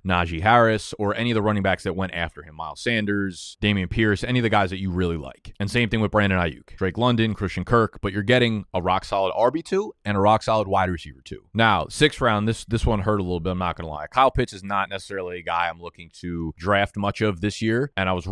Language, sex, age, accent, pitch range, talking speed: English, male, 20-39, American, 95-115 Hz, 255 wpm